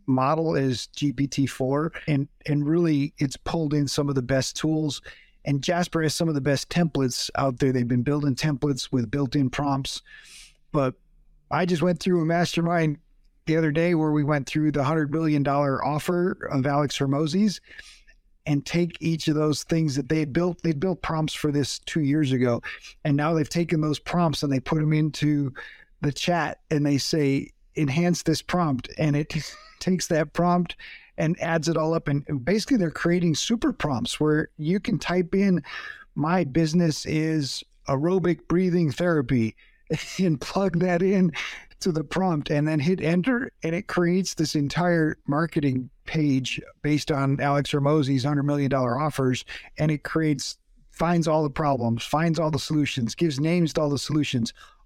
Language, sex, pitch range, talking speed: English, male, 140-170 Hz, 175 wpm